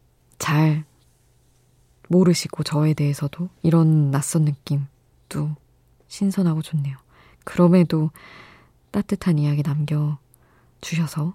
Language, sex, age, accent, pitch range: Korean, female, 20-39, native, 150-180 Hz